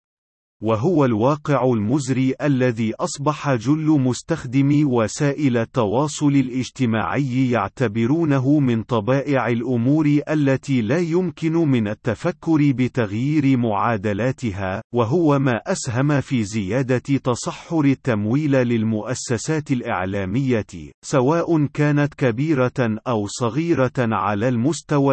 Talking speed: 90 wpm